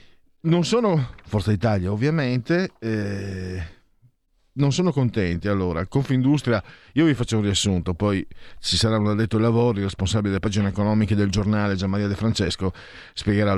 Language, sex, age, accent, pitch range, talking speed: Italian, male, 40-59, native, 95-130 Hz, 155 wpm